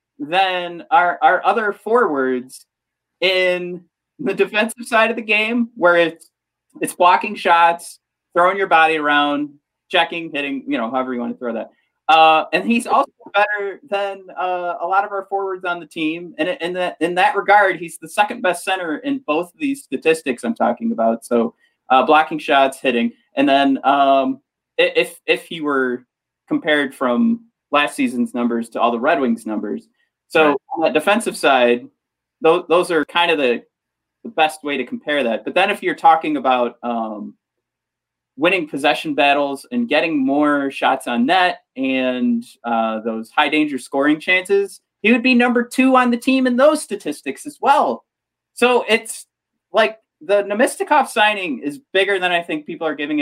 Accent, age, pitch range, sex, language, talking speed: American, 30-49, 140-205 Hz, male, English, 175 wpm